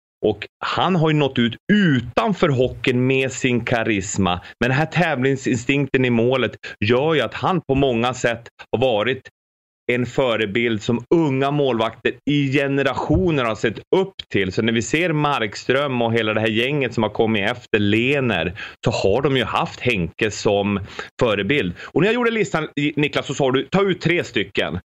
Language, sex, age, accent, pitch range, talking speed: English, male, 30-49, Swedish, 115-155 Hz, 175 wpm